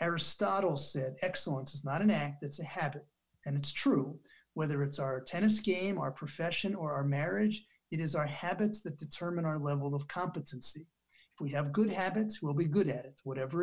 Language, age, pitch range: English, 40-59, 150-205 Hz